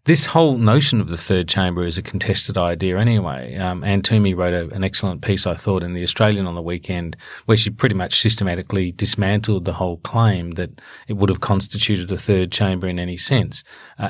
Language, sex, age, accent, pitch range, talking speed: English, male, 40-59, Australian, 95-115 Hz, 205 wpm